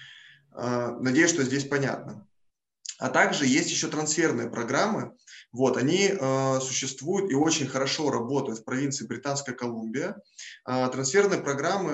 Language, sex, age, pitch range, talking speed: Russian, male, 20-39, 120-135 Hz, 125 wpm